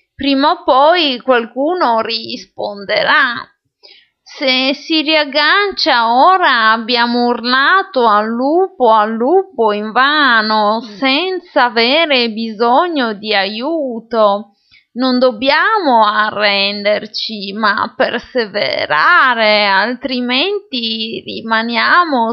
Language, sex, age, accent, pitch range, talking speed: Italian, female, 30-49, native, 220-290 Hz, 75 wpm